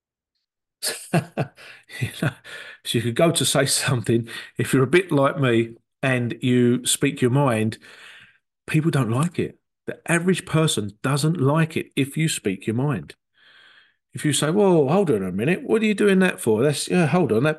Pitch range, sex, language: 120-175 Hz, male, English